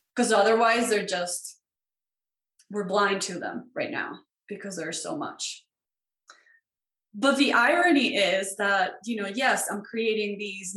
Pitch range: 195-250 Hz